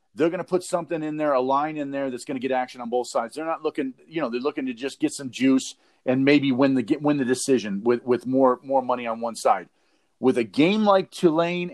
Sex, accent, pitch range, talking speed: male, American, 130-180 Hz, 265 wpm